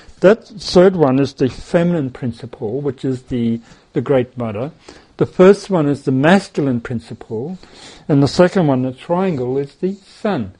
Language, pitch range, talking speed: English, 135-175 Hz, 165 wpm